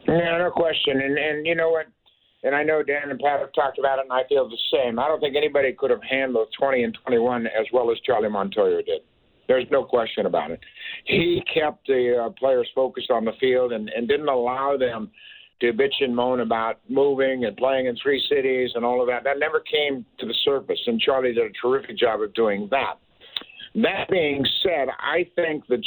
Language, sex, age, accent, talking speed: English, male, 60-79, American, 220 wpm